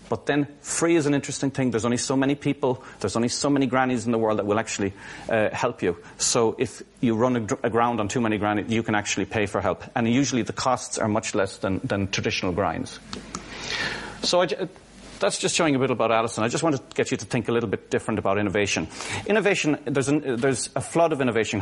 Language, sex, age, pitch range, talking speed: English, male, 40-59, 105-135 Hz, 235 wpm